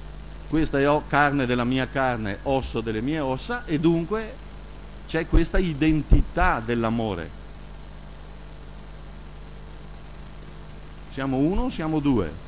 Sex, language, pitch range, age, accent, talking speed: male, Italian, 80-135 Hz, 50-69, native, 95 wpm